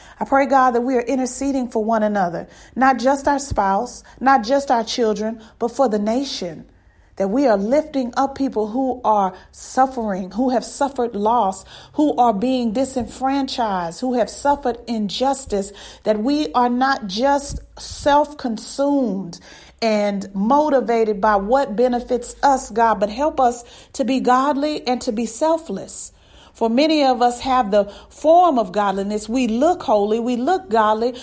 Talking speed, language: 155 wpm, English